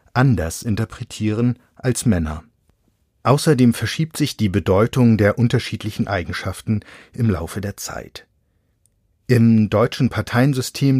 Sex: male